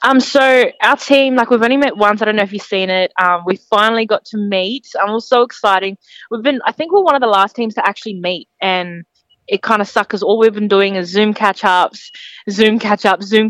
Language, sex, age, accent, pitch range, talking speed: English, female, 20-39, Australian, 190-225 Hz, 255 wpm